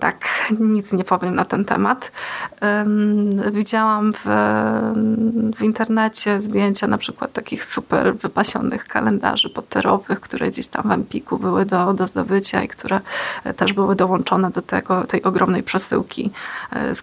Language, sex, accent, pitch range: Polish, female, native, 190-215 Hz